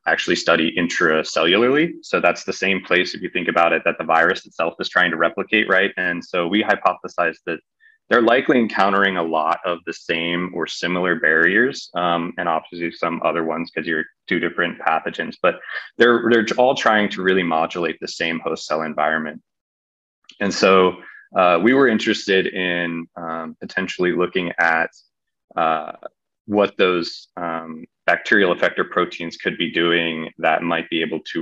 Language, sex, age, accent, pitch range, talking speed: English, male, 20-39, American, 85-100 Hz, 170 wpm